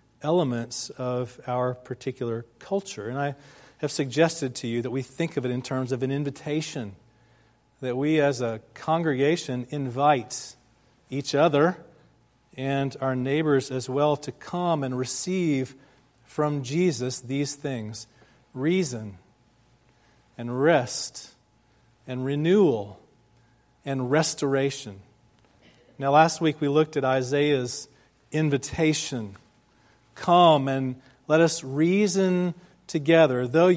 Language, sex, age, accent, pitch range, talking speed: English, male, 40-59, American, 125-160 Hz, 115 wpm